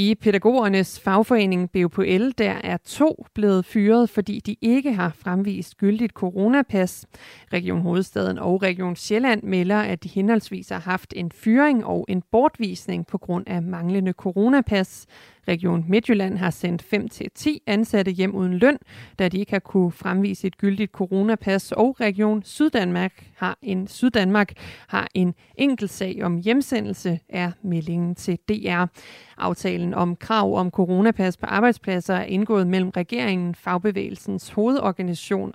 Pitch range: 180-210 Hz